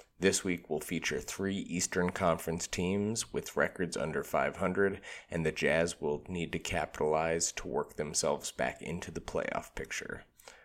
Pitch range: 80-90 Hz